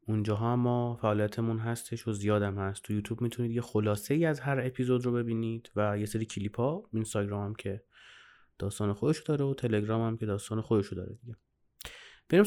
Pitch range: 105-140 Hz